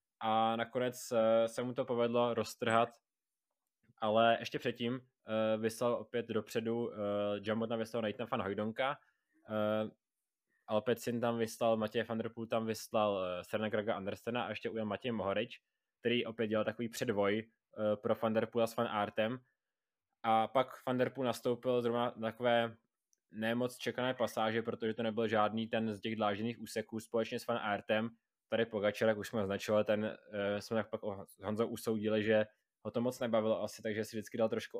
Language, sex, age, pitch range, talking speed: Czech, male, 20-39, 105-120 Hz, 180 wpm